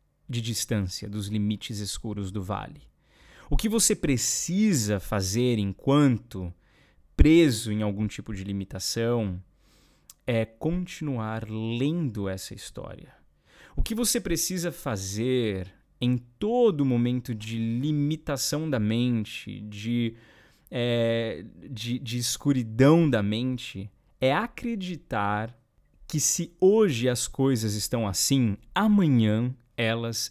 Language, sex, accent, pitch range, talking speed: Portuguese, male, Brazilian, 105-140 Hz, 105 wpm